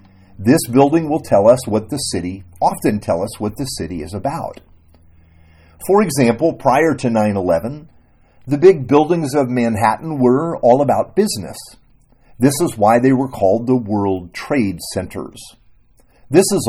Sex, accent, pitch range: male, American, 100-150 Hz